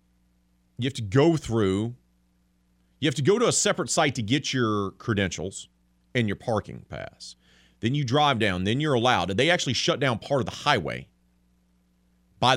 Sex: male